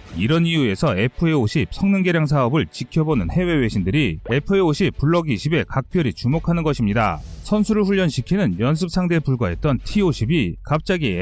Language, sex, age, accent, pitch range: Korean, male, 30-49, native, 115-170 Hz